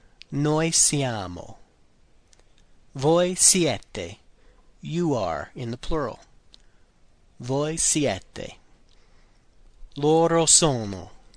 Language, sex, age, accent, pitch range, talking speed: English, male, 40-59, American, 120-165 Hz, 70 wpm